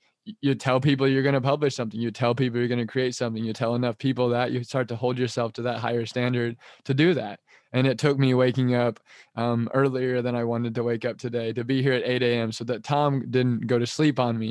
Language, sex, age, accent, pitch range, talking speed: English, male, 20-39, American, 120-135 Hz, 260 wpm